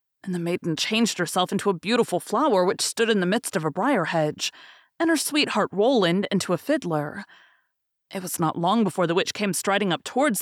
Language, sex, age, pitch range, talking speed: English, female, 30-49, 165-255 Hz, 205 wpm